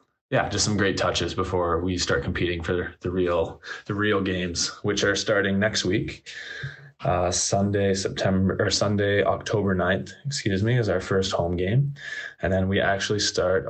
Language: English